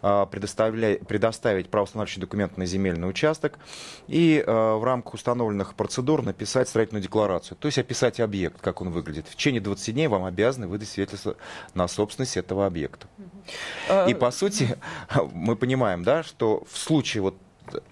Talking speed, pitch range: 135 wpm, 95-120 Hz